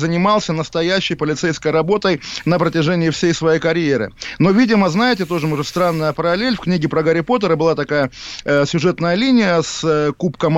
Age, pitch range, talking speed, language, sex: 20-39, 160-195 Hz, 165 wpm, Russian, male